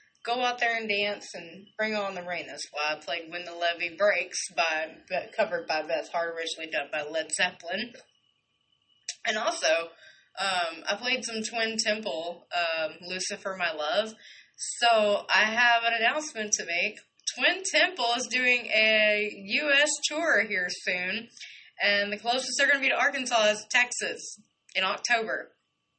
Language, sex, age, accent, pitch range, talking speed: English, female, 20-39, American, 175-235 Hz, 160 wpm